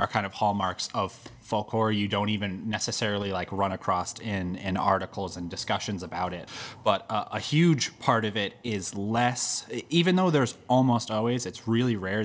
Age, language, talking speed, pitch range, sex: 30-49, English, 180 wpm, 95-115 Hz, male